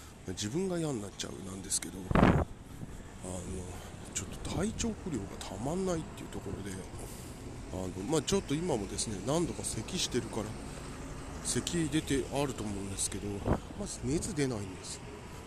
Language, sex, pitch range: Japanese, male, 90-115 Hz